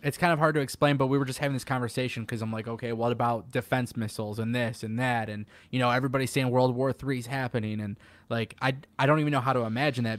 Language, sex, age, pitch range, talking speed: English, male, 20-39, 115-135 Hz, 270 wpm